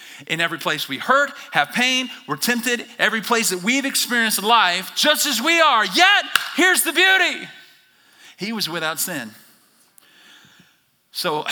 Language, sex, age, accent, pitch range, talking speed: English, male, 40-59, American, 140-220 Hz, 150 wpm